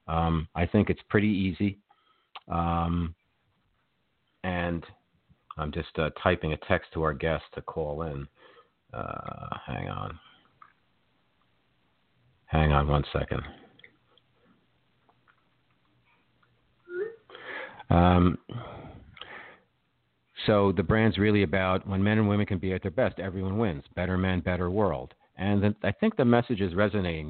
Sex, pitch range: male, 85-100 Hz